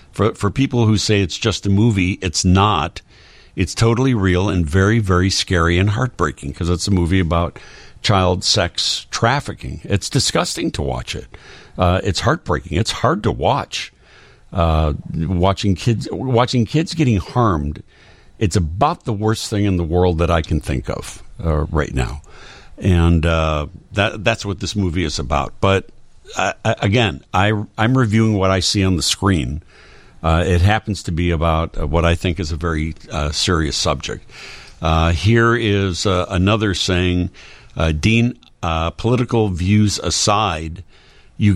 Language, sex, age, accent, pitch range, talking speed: English, male, 60-79, American, 85-105 Hz, 165 wpm